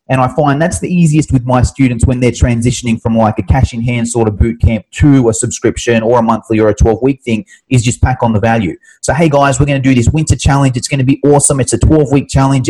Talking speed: 280 wpm